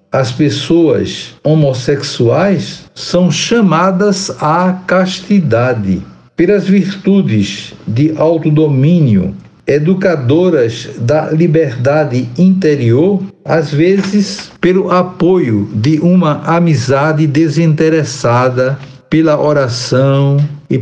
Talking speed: 75 wpm